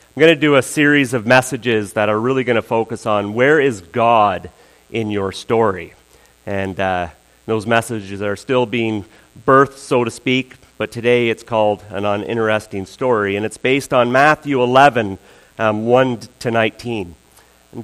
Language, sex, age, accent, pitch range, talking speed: English, male, 40-59, American, 90-130 Hz, 165 wpm